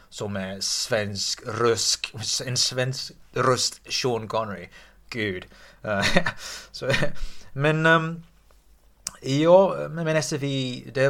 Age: 30-49